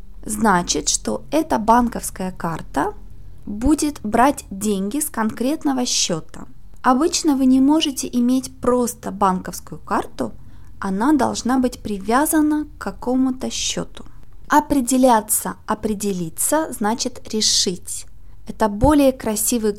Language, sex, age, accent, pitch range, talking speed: Russian, female, 20-39, native, 205-270 Hz, 100 wpm